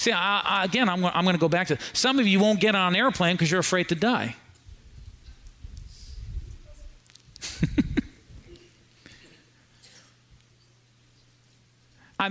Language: English